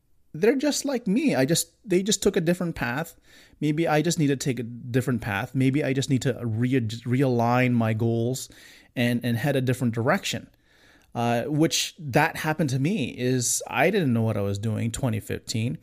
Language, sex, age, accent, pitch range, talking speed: English, male, 30-49, American, 115-145 Hz, 195 wpm